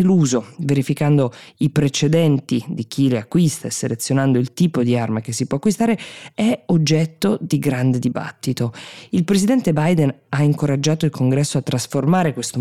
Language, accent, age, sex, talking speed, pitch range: Italian, native, 20-39, female, 155 wpm, 125-160 Hz